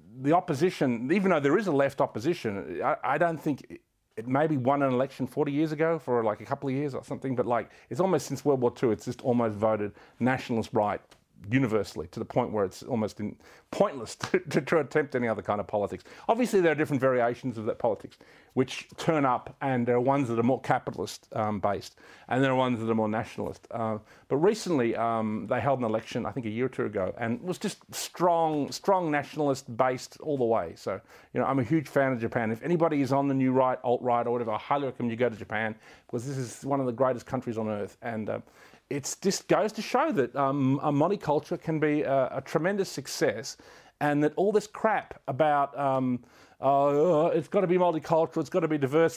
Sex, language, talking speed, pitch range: male, English, 225 wpm, 120-165 Hz